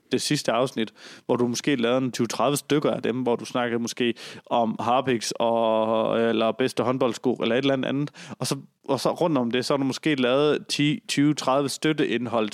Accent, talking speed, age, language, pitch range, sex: native, 190 wpm, 30-49, Danish, 120-140 Hz, male